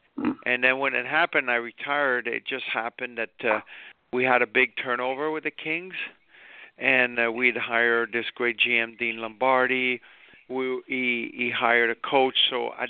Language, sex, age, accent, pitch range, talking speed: English, male, 50-69, American, 115-130 Hz, 170 wpm